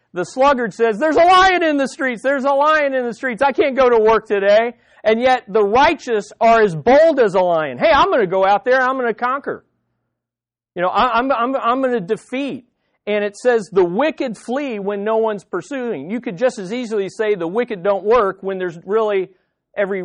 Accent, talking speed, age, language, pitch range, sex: American, 220 wpm, 50-69, English, 200-260 Hz, male